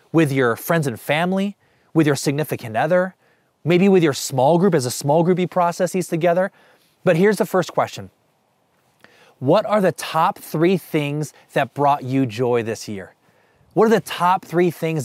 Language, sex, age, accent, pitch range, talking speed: English, male, 20-39, American, 140-180 Hz, 180 wpm